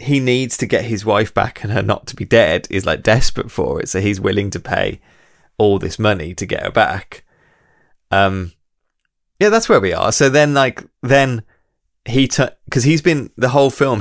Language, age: English, 20-39